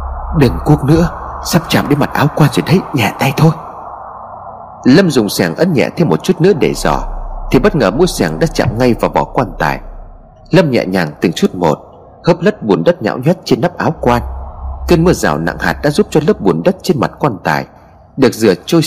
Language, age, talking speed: Vietnamese, 30-49, 225 wpm